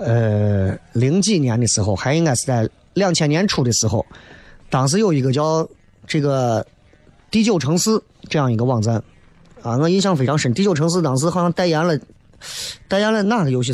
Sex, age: male, 30-49